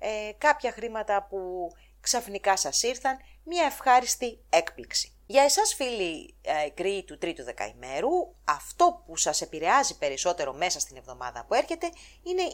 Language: English